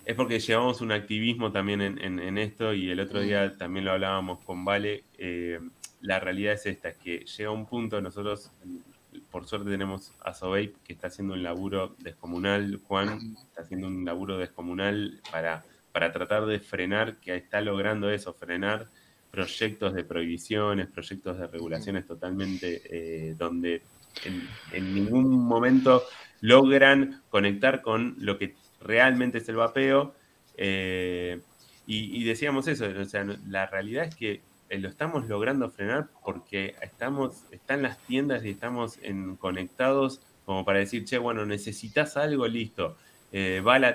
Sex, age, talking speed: male, 20-39, 155 wpm